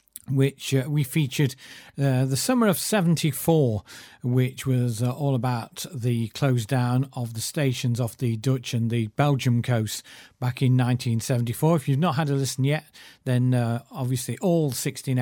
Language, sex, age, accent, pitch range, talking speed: English, male, 40-59, British, 125-145 Hz, 165 wpm